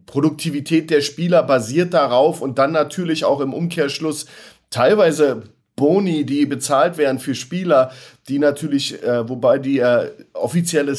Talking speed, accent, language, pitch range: 135 wpm, German, German, 135-165 Hz